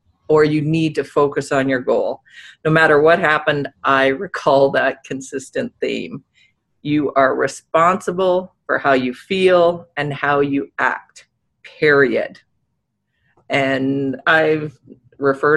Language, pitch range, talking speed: English, 135-160 Hz, 125 wpm